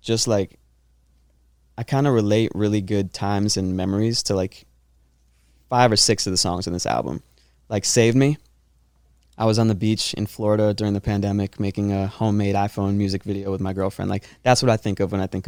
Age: 20-39